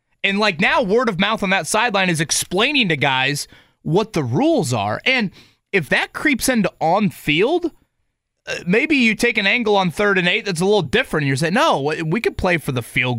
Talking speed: 210 wpm